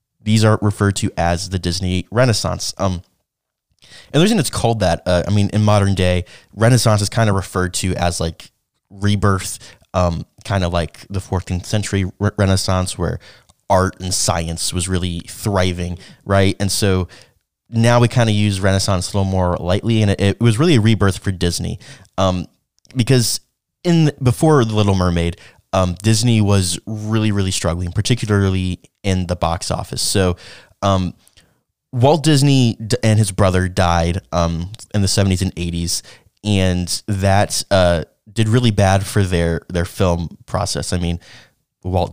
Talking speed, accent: 165 wpm, American